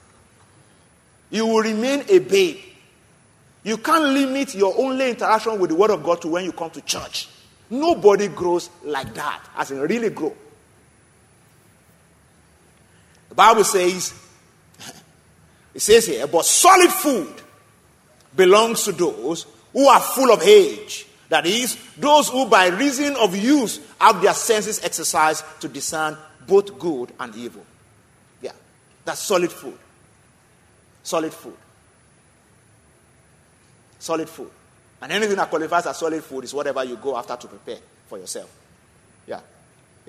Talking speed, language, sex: 135 wpm, English, male